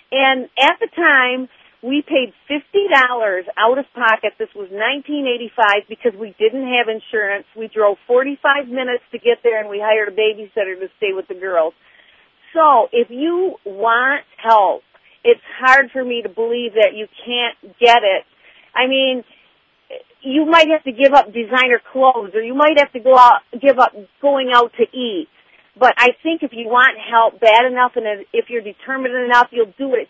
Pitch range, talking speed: 225-280 Hz, 185 wpm